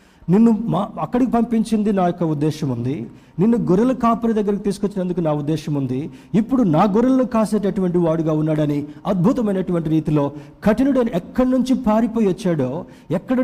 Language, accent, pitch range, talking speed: Telugu, native, 155-220 Hz, 135 wpm